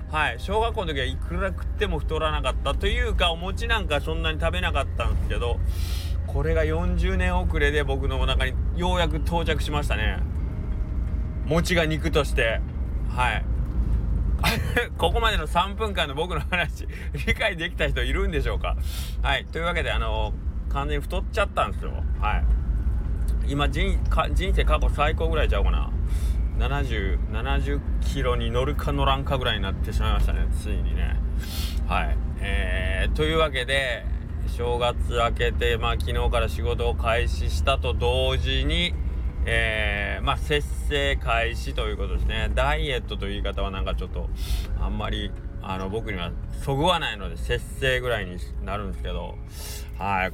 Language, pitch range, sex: Japanese, 70-90 Hz, male